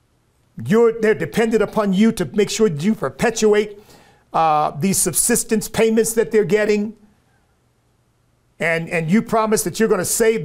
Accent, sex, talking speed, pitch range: American, male, 150 wpm, 175-225 Hz